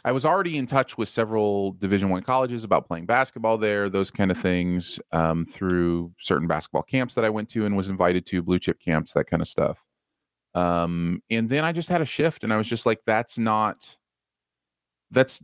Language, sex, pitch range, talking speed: English, male, 85-115 Hz, 210 wpm